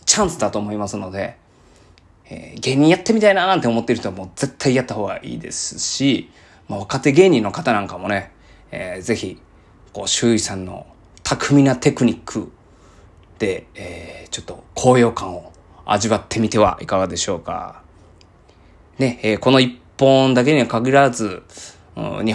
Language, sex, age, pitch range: Japanese, male, 20-39, 100-130 Hz